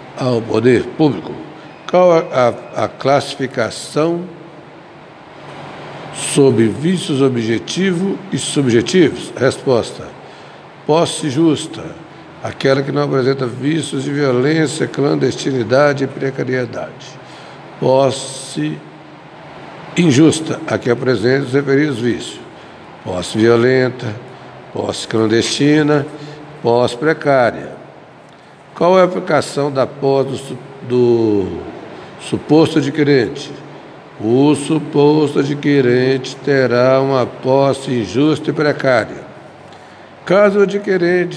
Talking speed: 85 wpm